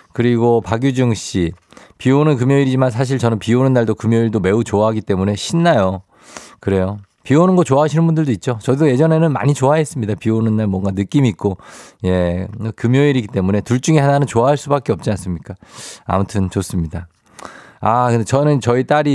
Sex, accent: male, native